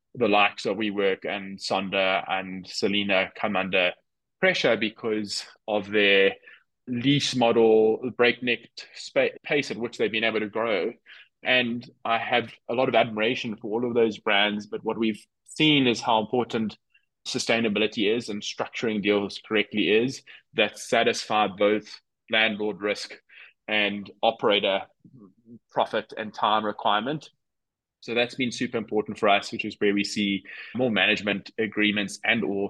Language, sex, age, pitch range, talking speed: English, male, 20-39, 105-120 Hz, 145 wpm